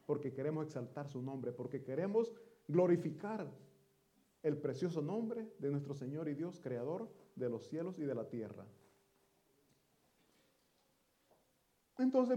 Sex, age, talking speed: male, 40-59, 120 wpm